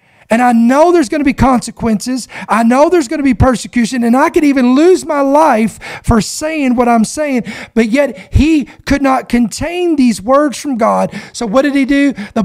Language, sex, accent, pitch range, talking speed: English, male, American, 225-295 Hz, 205 wpm